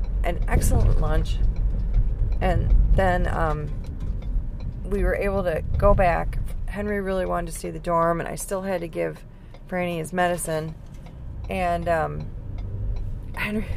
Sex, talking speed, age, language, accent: female, 135 wpm, 30-49, English, American